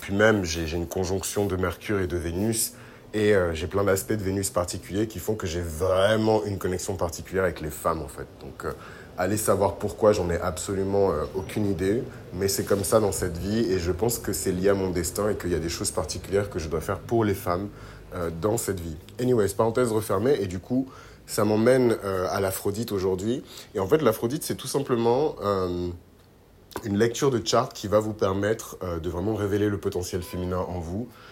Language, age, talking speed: French, 30-49, 215 wpm